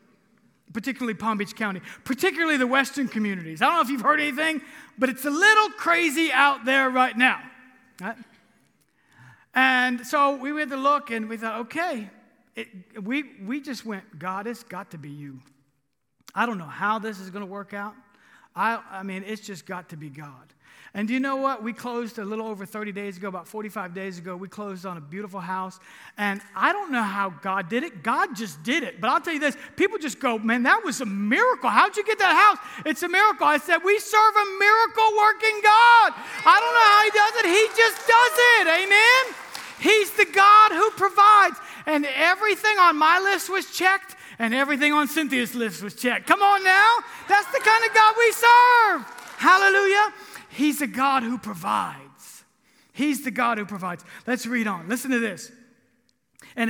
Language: English